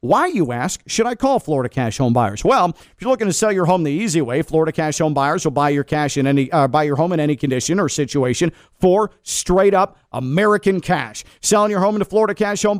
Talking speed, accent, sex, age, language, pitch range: 240 wpm, American, male, 50-69, English, 155-205 Hz